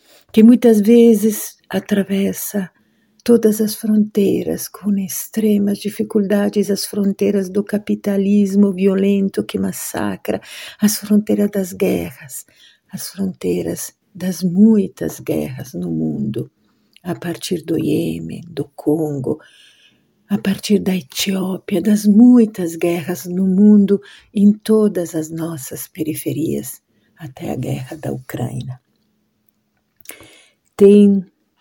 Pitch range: 165-210 Hz